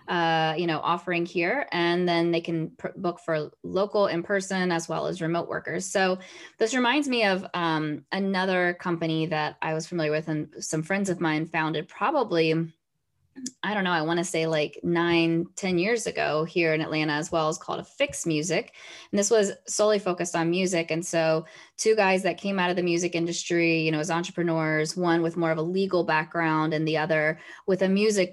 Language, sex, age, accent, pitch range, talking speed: English, female, 20-39, American, 160-180 Hz, 205 wpm